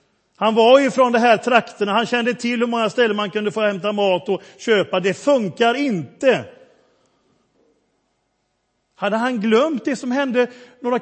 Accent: native